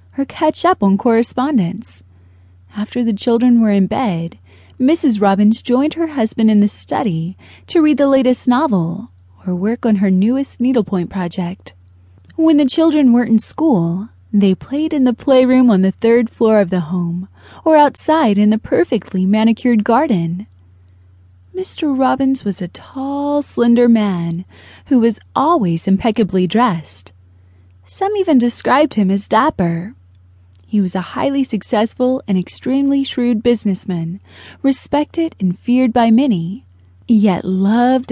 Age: 20-39